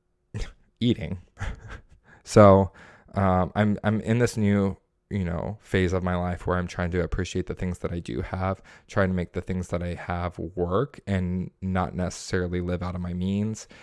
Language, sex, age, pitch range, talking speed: English, male, 20-39, 90-105 Hz, 180 wpm